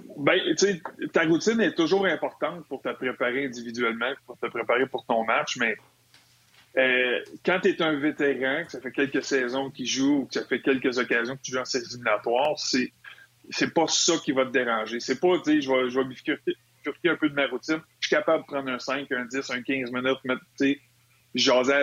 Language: French